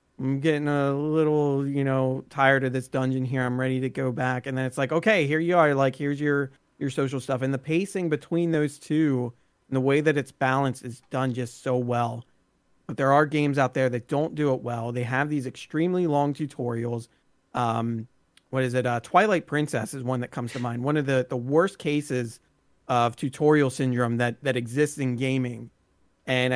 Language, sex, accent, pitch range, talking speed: English, male, American, 125-150 Hz, 210 wpm